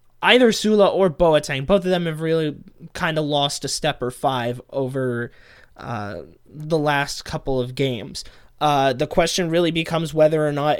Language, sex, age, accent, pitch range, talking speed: English, male, 20-39, American, 135-165 Hz, 170 wpm